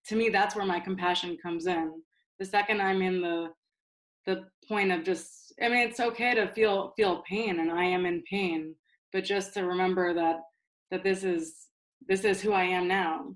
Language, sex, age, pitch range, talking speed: English, female, 20-39, 180-205 Hz, 200 wpm